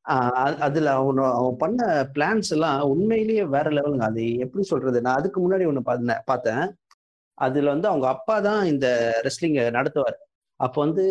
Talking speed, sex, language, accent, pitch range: 150 wpm, male, Tamil, native, 130-180 Hz